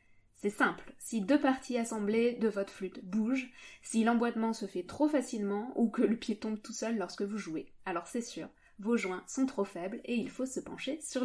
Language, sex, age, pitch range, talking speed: French, female, 20-39, 190-255 Hz, 215 wpm